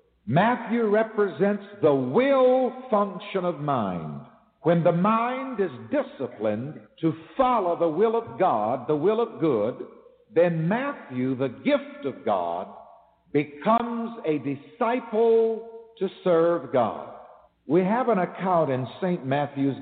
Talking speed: 125 wpm